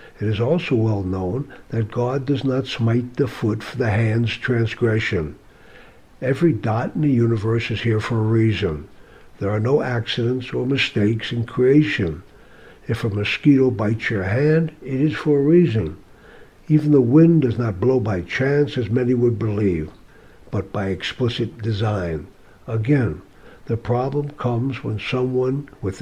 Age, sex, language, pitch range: 60-79, male, English, 110-130 Hz